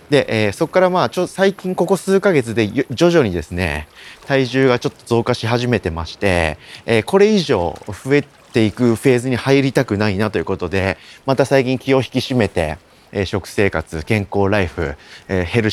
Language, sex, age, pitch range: Japanese, male, 30-49, 90-135 Hz